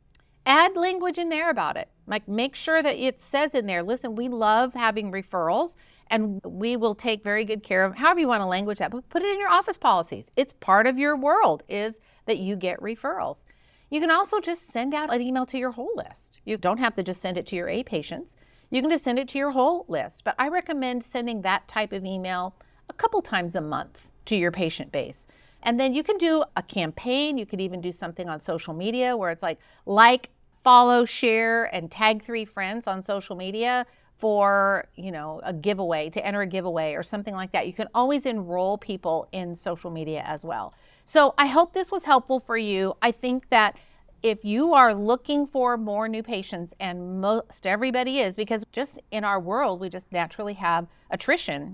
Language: English